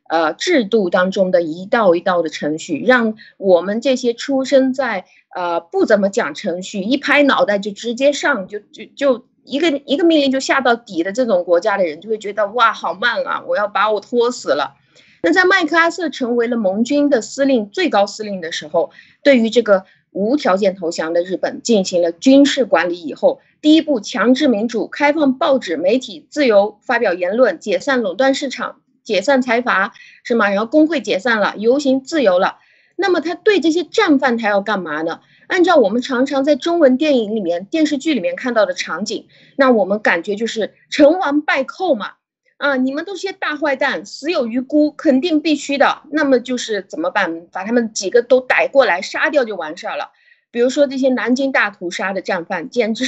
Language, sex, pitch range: Chinese, female, 210-285 Hz